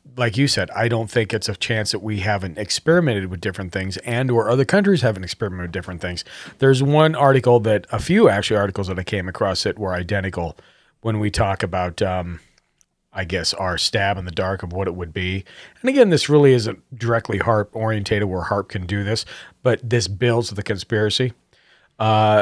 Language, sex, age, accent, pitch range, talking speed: English, male, 40-59, American, 100-125 Hz, 205 wpm